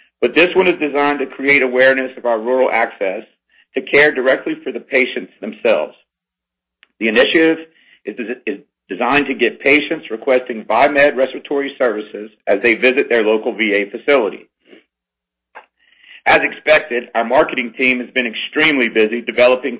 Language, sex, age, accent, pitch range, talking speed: English, male, 40-59, American, 120-145 Hz, 140 wpm